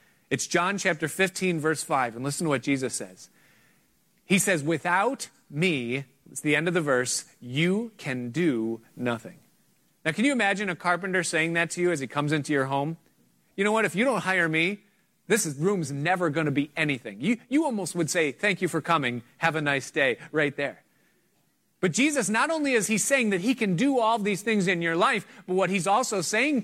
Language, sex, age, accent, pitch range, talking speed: English, male, 30-49, American, 140-190 Hz, 210 wpm